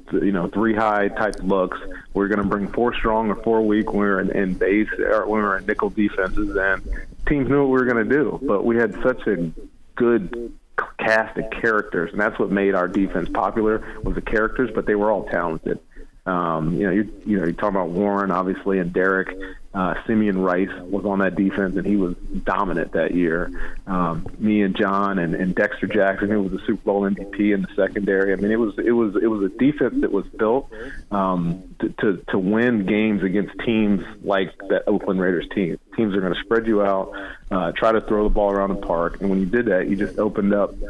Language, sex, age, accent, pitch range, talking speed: English, male, 40-59, American, 95-110 Hz, 225 wpm